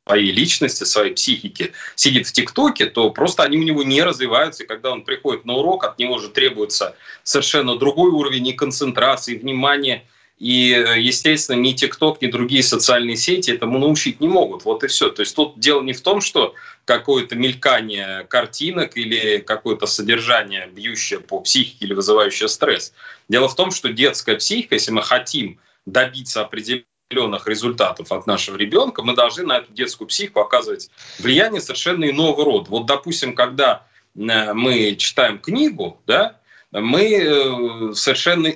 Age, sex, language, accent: 20-39, male, Russian, native